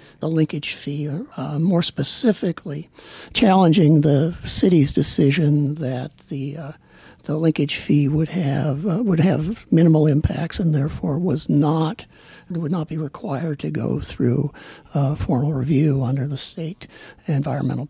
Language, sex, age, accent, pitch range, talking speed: English, male, 60-79, American, 145-185 Hz, 140 wpm